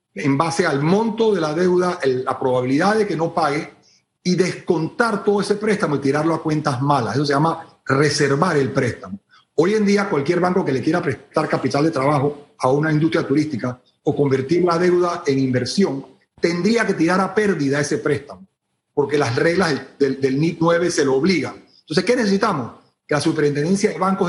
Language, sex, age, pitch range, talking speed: Spanish, male, 40-59, 145-190 Hz, 190 wpm